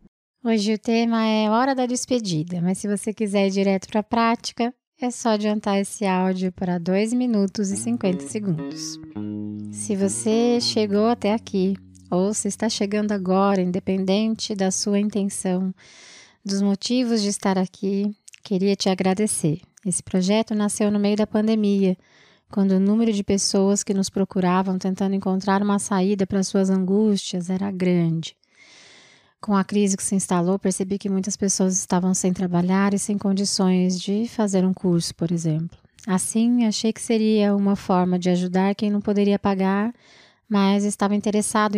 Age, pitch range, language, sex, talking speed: 20-39, 190-215 Hz, Portuguese, female, 160 wpm